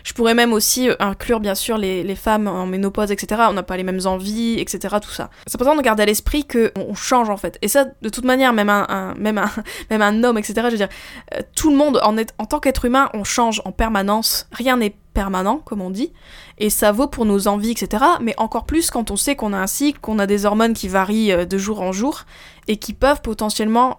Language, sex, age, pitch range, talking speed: French, female, 10-29, 195-235 Hz, 255 wpm